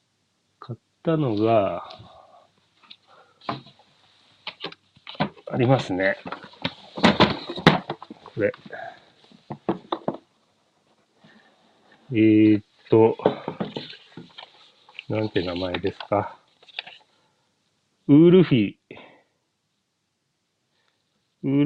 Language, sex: Japanese, male